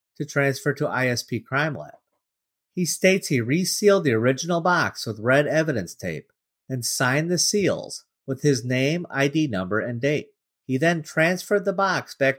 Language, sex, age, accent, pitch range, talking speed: English, male, 50-69, American, 125-175 Hz, 165 wpm